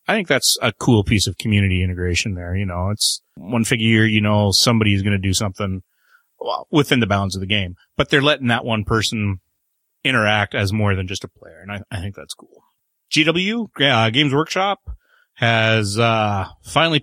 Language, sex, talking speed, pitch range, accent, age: English, male, 195 wpm, 100-130 Hz, American, 30-49